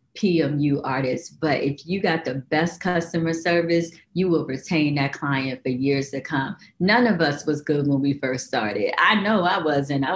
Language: English